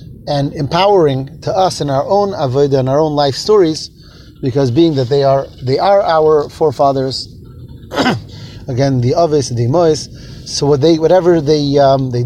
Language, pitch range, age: English, 130-170 Hz, 30-49